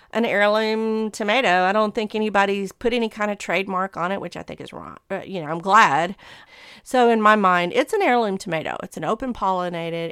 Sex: female